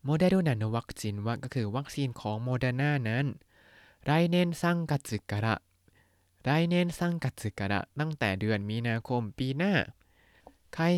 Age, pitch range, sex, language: 20-39, 105-150 Hz, male, Thai